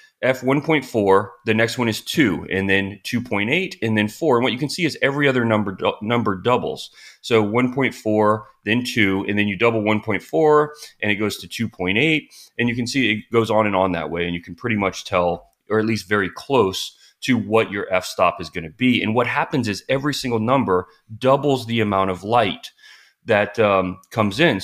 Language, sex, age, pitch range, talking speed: English, male, 30-49, 105-130 Hz, 205 wpm